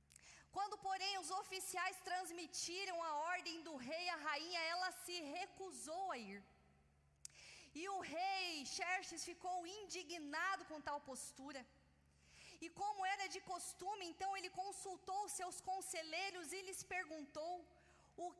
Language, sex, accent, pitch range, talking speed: Portuguese, female, Brazilian, 330-385 Hz, 125 wpm